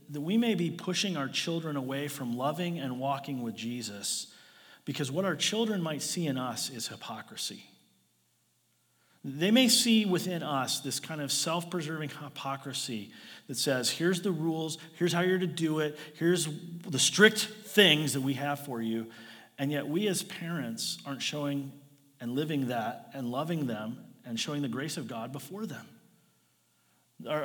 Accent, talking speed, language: American, 165 wpm, English